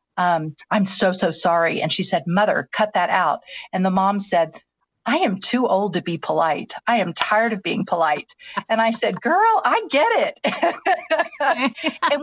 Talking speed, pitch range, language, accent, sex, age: 180 wpm, 180-225 Hz, English, American, female, 50-69